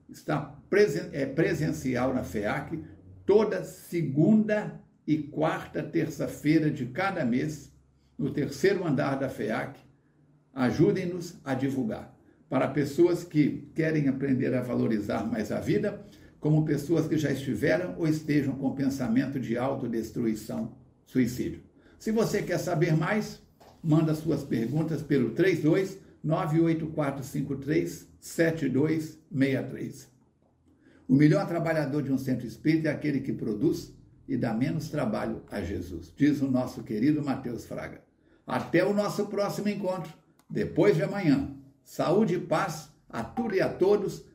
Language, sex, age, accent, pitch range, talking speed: Portuguese, male, 60-79, Brazilian, 130-170 Hz, 125 wpm